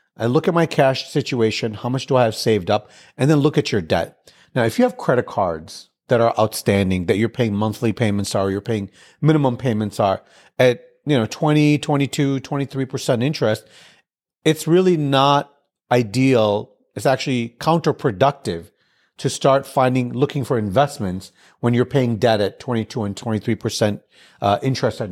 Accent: American